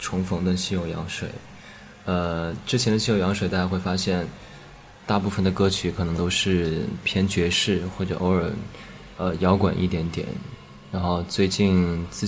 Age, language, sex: 20-39, Chinese, male